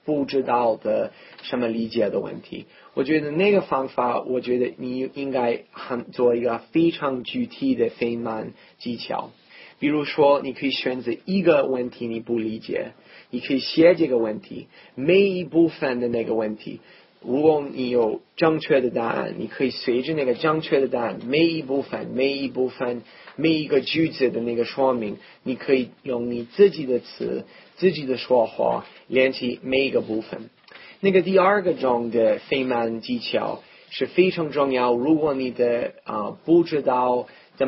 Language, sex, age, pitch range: Chinese, male, 30-49, 120-150 Hz